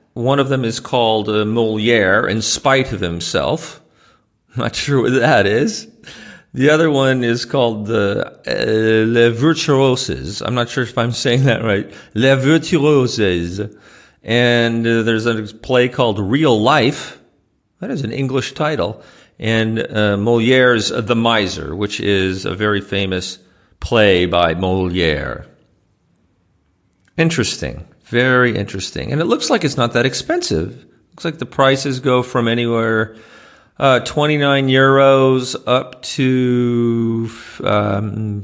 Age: 40-59